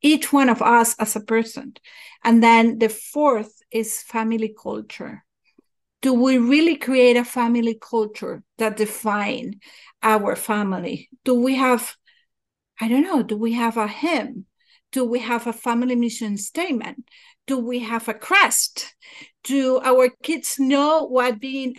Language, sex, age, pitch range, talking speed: English, female, 50-69, 225-270 Hz, 150 wpm